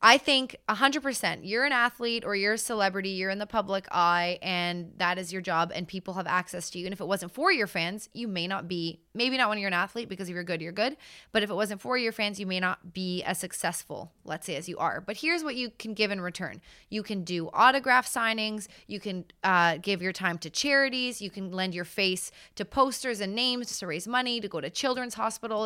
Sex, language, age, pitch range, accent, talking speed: female, English, 20-39, 185-235 Hz, American, 250 wpm